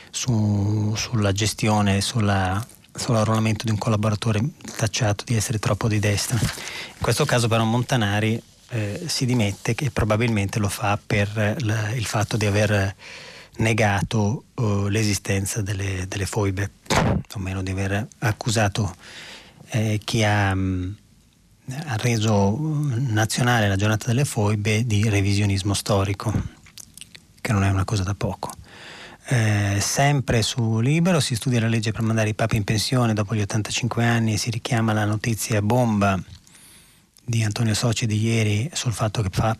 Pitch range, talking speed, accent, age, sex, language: 105-120 Hz, 145 wpm, native, 30-49, male, Italian